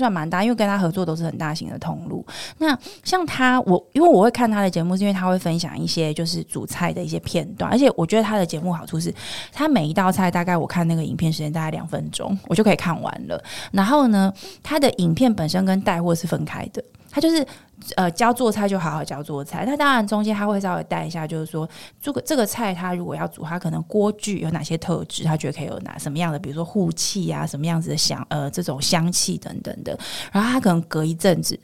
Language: Chinese